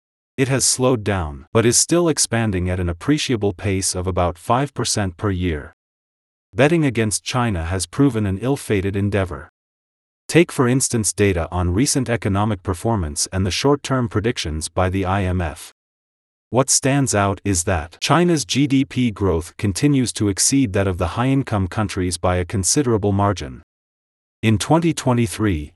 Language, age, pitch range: English, 30-49, 90-120 Hz